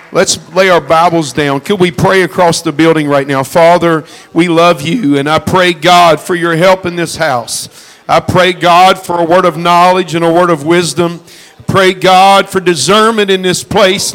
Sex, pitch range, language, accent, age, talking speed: male, 165-200 Hz, English, American, 50-69, 205 wpm